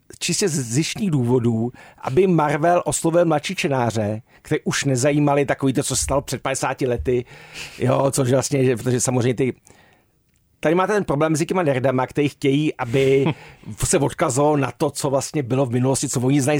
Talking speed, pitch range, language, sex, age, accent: 175 wpm, 120-150 Hz, Czech, male, 50-69, native